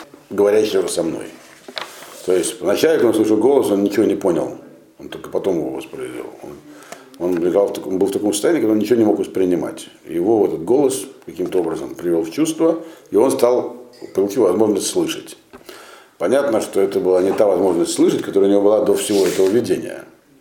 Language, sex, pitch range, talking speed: Russian, male, 310-395 Hz, 190 wpm